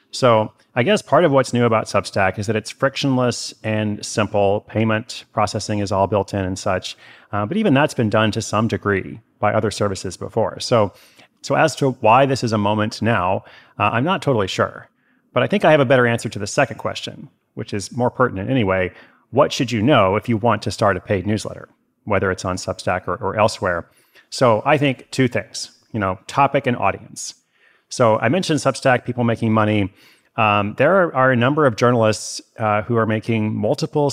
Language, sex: English, male